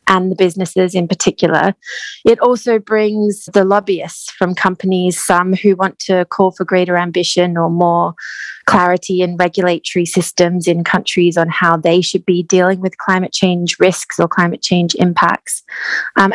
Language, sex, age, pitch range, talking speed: English, female, 20-39, 185-210 Hz, 160 wpm